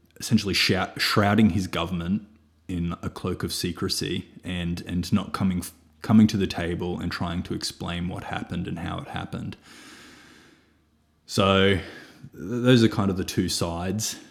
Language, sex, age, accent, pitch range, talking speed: English, male, 20-39, Australian, 90-110 Hz, 145 wpm